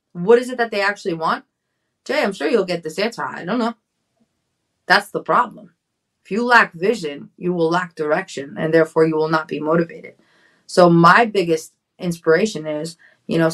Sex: female